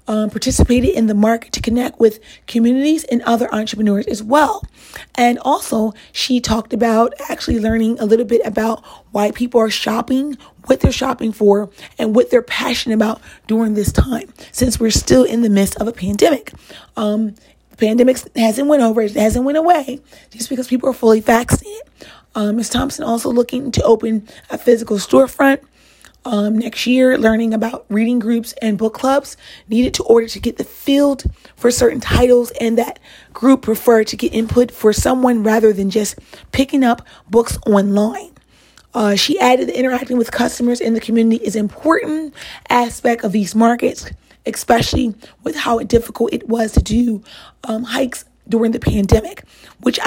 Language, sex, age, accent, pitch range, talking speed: English, female, 30-49, American, 220-255 Hz, 170 wpm